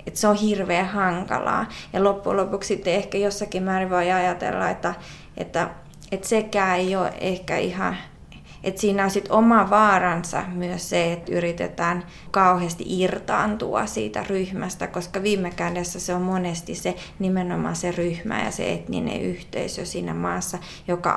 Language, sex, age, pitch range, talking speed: Finnish, female, 20-39, 175-195 Hz, 145 wpm